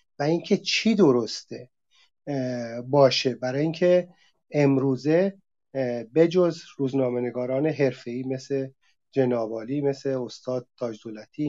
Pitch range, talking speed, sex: 125-165 Hz, 90 wpm, male